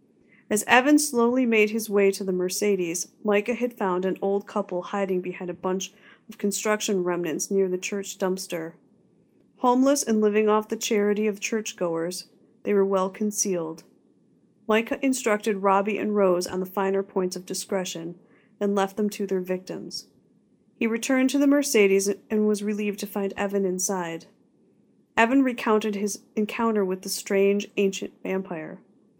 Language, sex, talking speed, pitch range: English, female, 155 wpm, 190-220 Hz